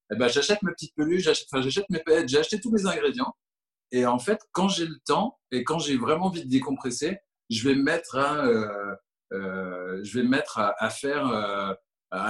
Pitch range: 120-160 Hz